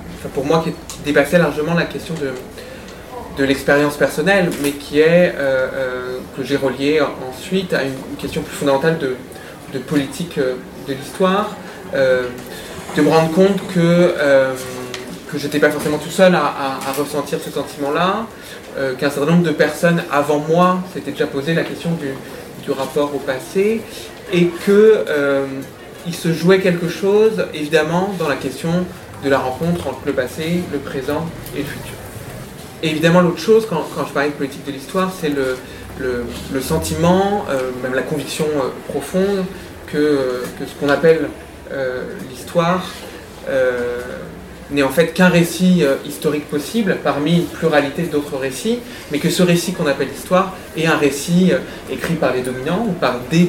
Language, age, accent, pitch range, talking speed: French, 20-39, French, 140-175 Hz, 170 wpm